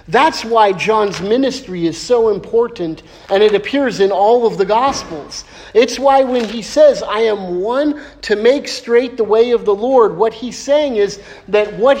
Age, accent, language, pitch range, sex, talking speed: 50-69, American, English, 170-225 Hz, male, 185 wpm